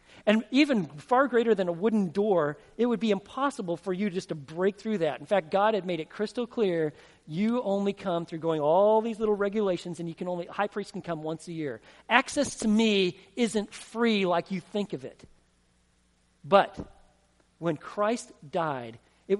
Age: 40-59